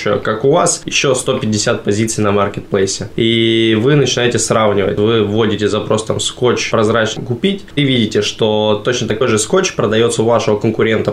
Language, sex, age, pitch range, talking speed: Russian, male, 20-39, 105-120 Hz, 160 wpm